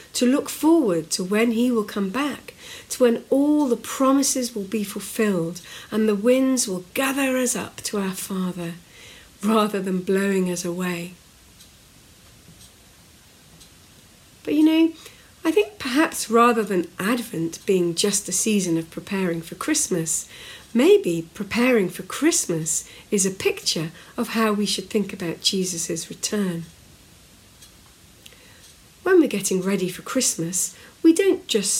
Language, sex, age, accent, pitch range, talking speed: English, female, 50-69, British, 185-265 Hz, 140 wpm